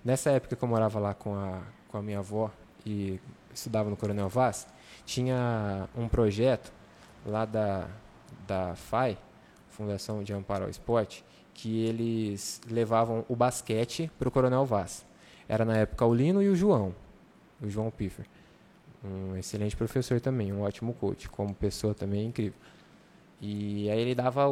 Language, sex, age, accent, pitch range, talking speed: Portuguese, male, 20-39, Brazilian, 105-135 Hz, 155 wpm